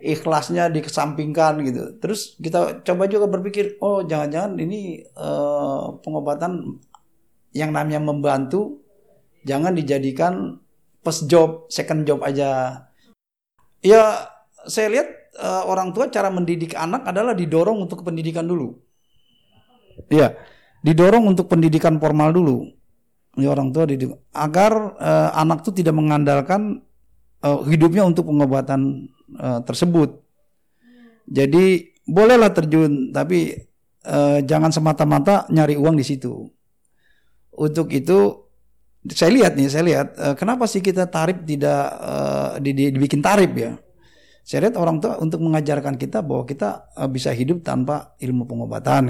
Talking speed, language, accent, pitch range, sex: 120 wpm, Indonesian, native, 135-180 Hz, male